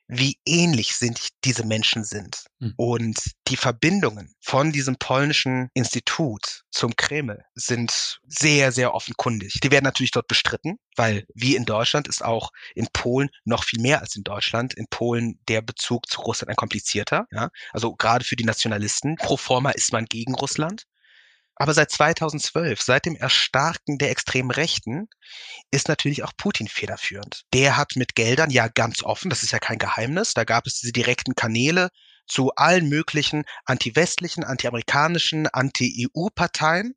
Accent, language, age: German, German, 30-49